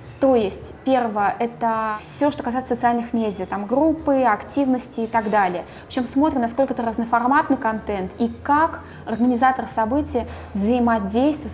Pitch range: 220-265 Hz